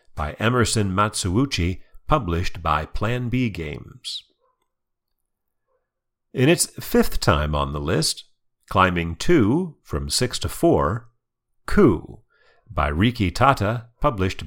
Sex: male